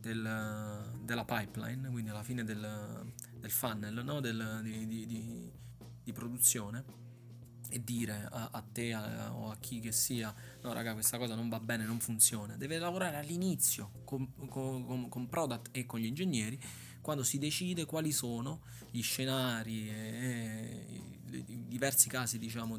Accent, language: native, Italian